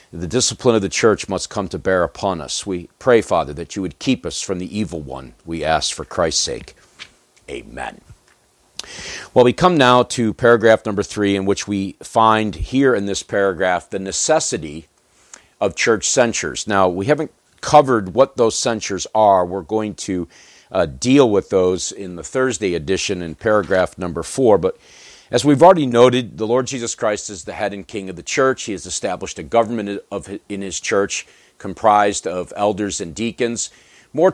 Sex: male